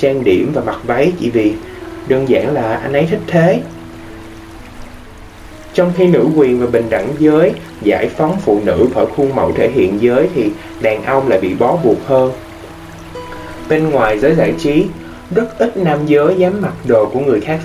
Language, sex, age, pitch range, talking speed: Vietnamese, male, 20-39, 110-170 Hz, 185 wpm